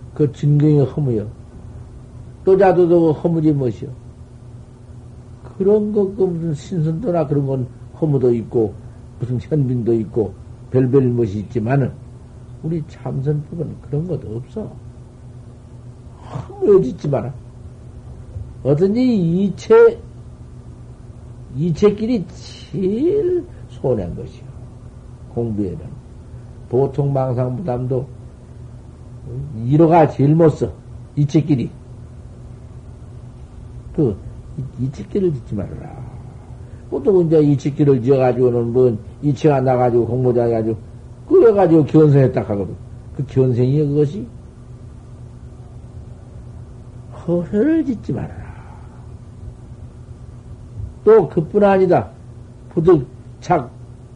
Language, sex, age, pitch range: Korean, male, 50-69, 120-150 Hz